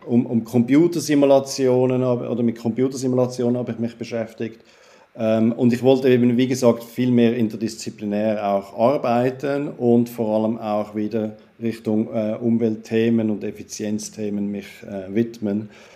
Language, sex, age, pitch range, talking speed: German, male, 50-69, 110-130 Hz, 135 wpm